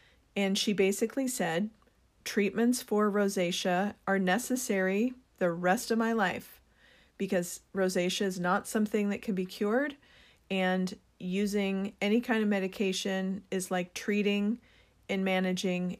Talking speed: 130 wpm